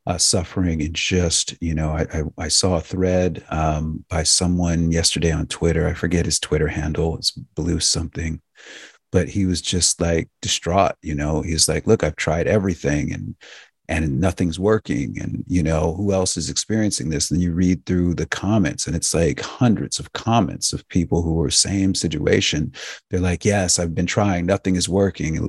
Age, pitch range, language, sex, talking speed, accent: 40-59, 80-95 Hz, English, male, 185 wpm, American